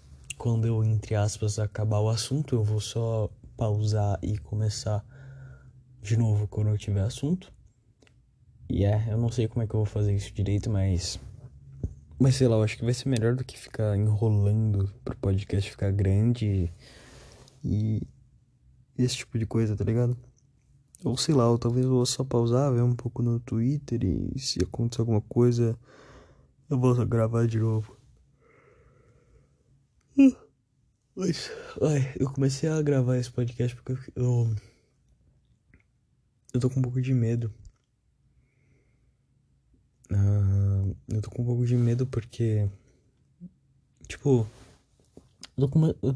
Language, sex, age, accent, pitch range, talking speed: Portuguese, male, 20-39, Brazilian, 105-130 Hz, 145 wpm